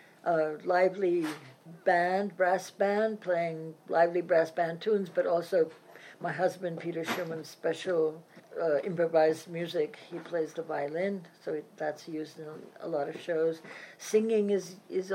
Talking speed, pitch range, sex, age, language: 145 wpm, 160-190 Hz, female, 60-79, English